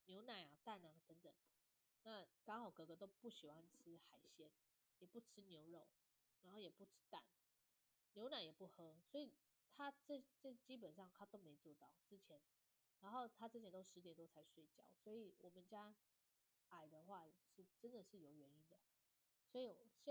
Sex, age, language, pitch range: female, 20-39, Chinese, 170-210 Hz